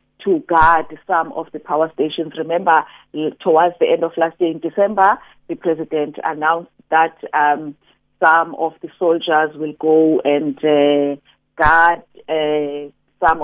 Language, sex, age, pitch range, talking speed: English, female, 40-59, 155-185 Hz, 145 wpm